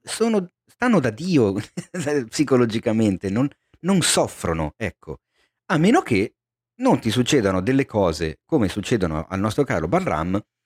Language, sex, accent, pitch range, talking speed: Italian, male, native, 90-120 Hz, 130 wpm